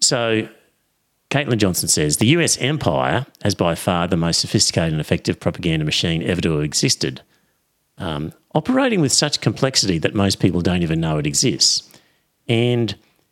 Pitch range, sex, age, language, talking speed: 85-130 Hz, male, 50-69, English, 160 wpm